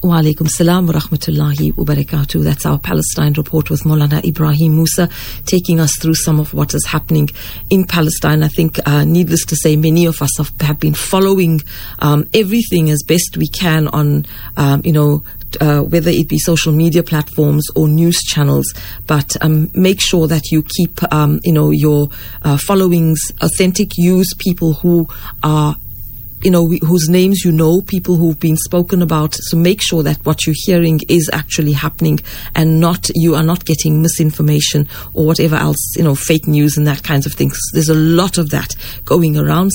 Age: 40-59